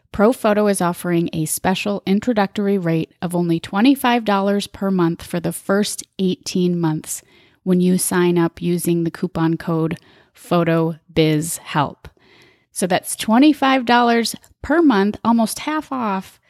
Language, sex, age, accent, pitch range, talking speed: English, female, 30-49, American, 175-220 Hz, 125 wpm